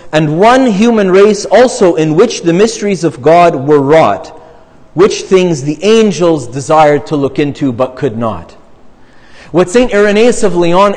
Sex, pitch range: male, 170-225 Hz